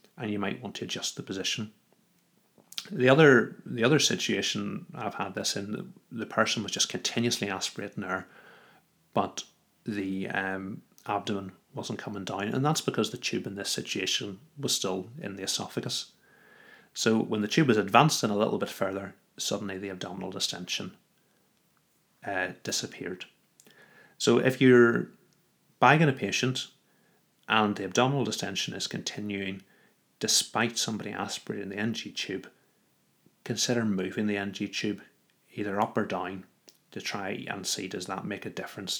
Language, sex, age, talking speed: English, male, 30-49, 150 wpm